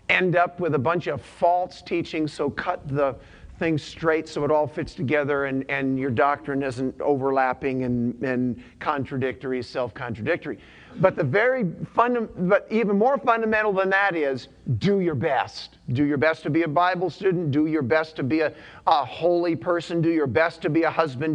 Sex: male